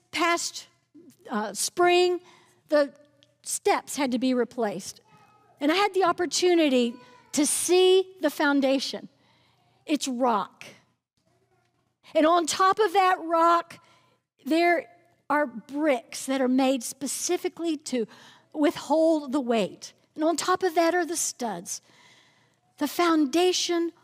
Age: 50-69